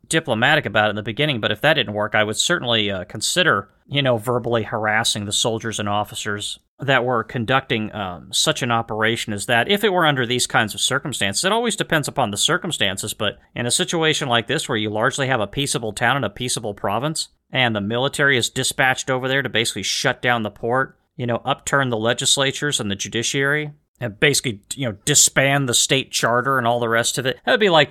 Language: English